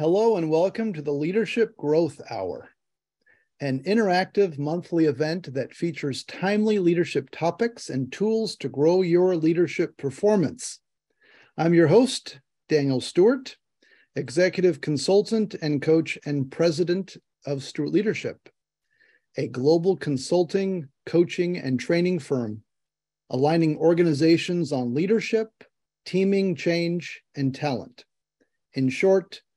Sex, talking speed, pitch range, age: male, 110 wpm, 145-190 Hz, 40-59